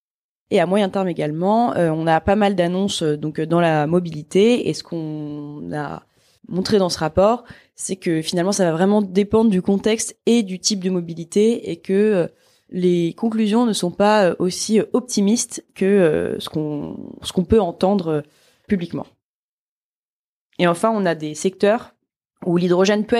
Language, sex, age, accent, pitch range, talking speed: French, female, 20-39, French, 170-215 Hz, 170 wpm